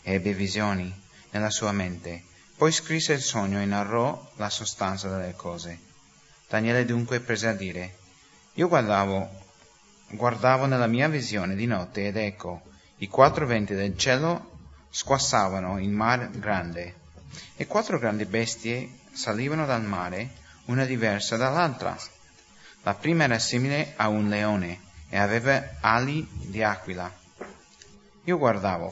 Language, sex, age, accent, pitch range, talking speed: English, male, 30-49, Italian, 95-120 Hz, 130 wpm